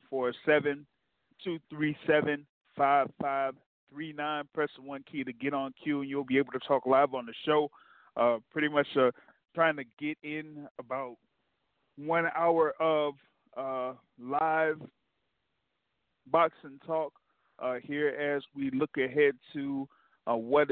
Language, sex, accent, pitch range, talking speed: English, male, American, 125-145 Hz, 150 wpm